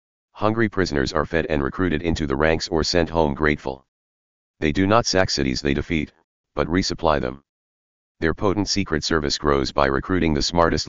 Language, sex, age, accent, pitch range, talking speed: English, male, 40-59, American, 70-85 Hz, 175 wpm